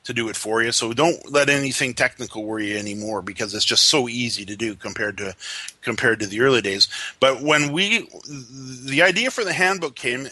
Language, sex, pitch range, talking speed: English, male, 105-135 Hz, 210 wpm